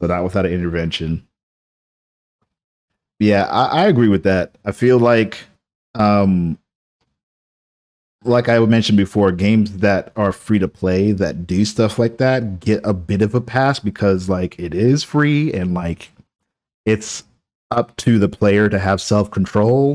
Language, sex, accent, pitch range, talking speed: English, male, American, 90-115 Hz, 155 wpm